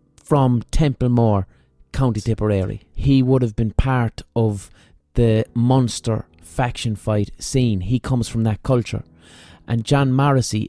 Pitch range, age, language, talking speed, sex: 100-125 Hz, 30-49, English, 130 wpm, male